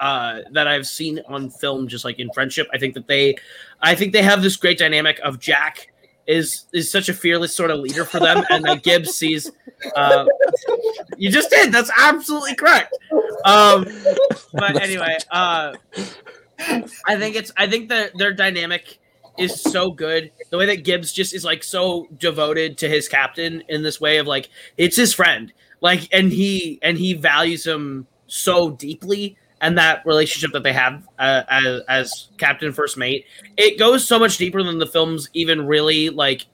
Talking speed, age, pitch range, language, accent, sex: 180 wpm, 20-39, 150-195 Hz, English, American, male